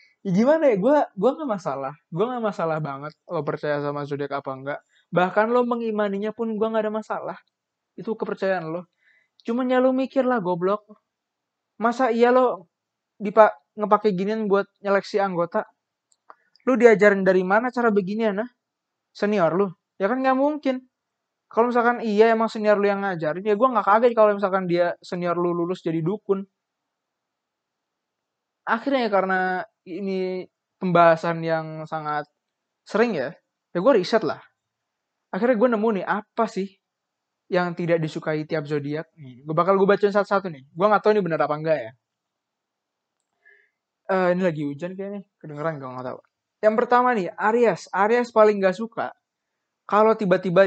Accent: native